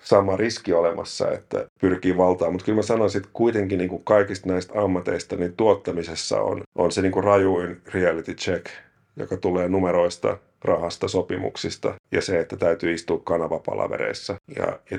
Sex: male